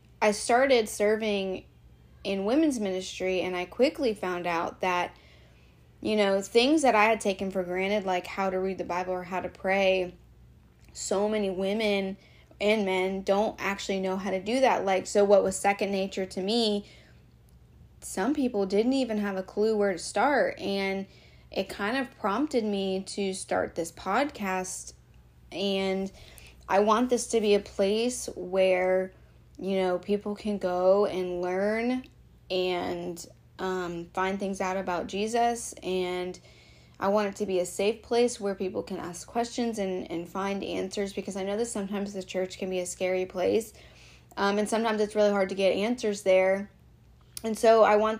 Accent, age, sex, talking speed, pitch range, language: American, 20-39, female, 170 wpm, 185-215 Hz, English